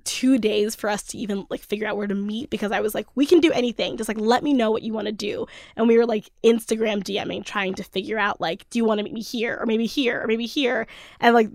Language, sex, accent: English, female, American